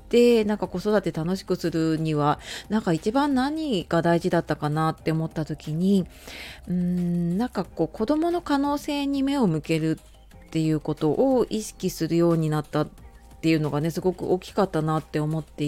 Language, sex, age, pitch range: Japanese, female, 30-49, 160-215 Hz